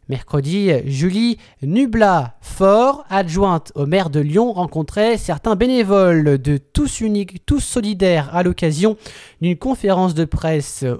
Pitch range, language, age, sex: 160-210 Hz, French, 20-39, male